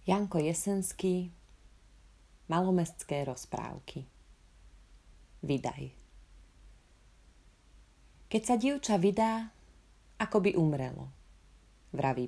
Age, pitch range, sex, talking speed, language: 30-49, 135-210 Hz, female, 65 wpm, Slovak